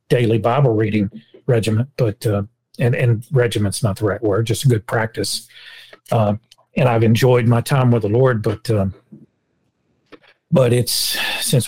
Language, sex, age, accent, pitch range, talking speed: English, male, 40-59, American, 110-140 Hz, 160 wpm